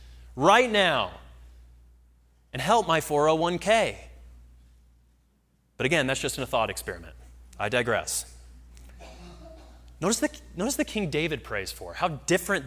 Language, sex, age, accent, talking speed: English, male, 30-49, American, 115 wpm